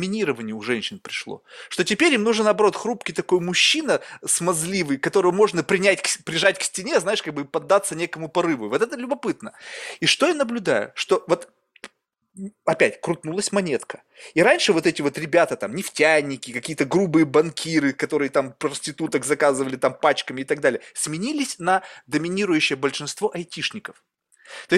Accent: native